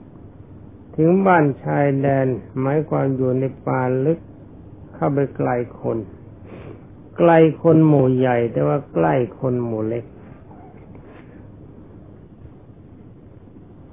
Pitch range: 105-145 Hz